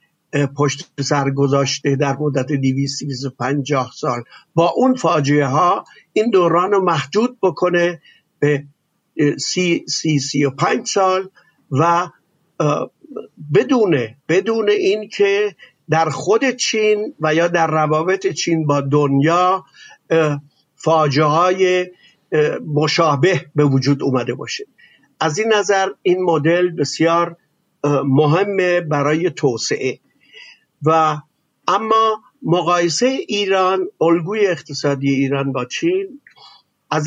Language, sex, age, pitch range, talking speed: Persian, male, 50-69, 145-185 Hz, 100 wpm